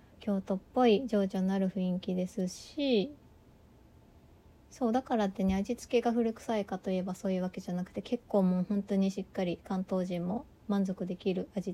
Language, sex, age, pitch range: Japanese, female, 20-39, 185-225 Hz